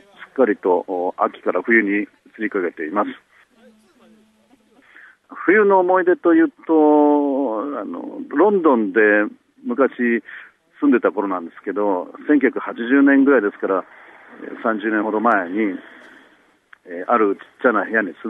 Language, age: Japanese, 50-69